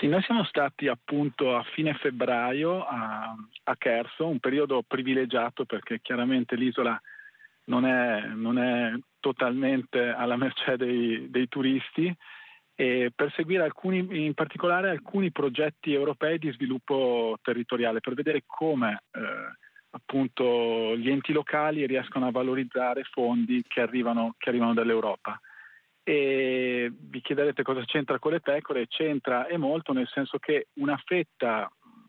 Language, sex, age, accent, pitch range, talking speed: Italian, male, 40-59, native, 125-160 Hz, 130 wpm